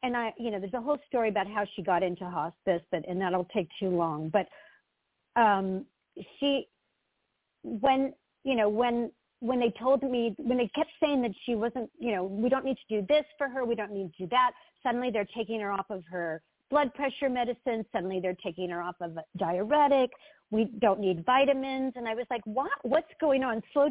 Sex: female